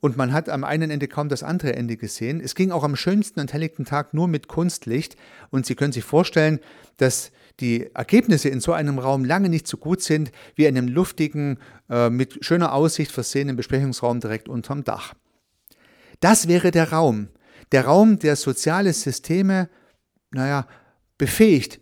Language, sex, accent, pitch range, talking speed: German, male, German, 125-165 Hz, 170 wpm